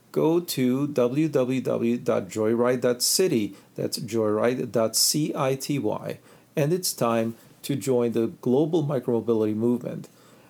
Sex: male